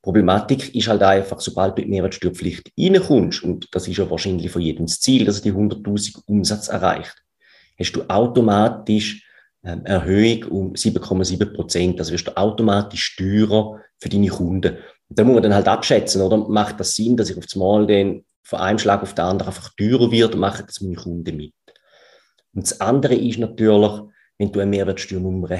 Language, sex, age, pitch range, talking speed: German, male, 30-49, 95-110 Hz, 185 wpm